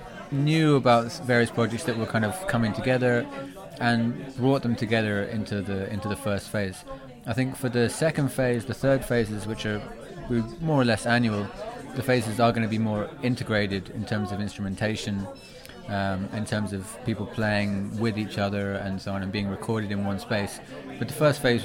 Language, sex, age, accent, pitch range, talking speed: English, male, 20-39, British, 105-130 Hz, 195 wpm